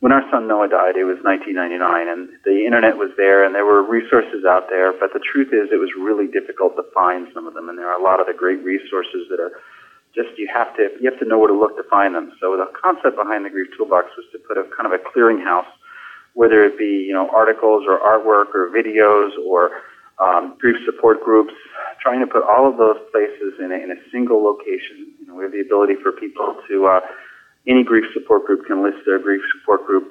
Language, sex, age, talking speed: English, male, 40-59, 245 wpm